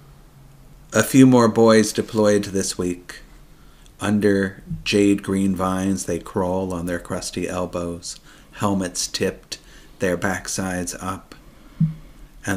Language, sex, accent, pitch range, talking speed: English, male, American, 90-105 Hz, 110 wpm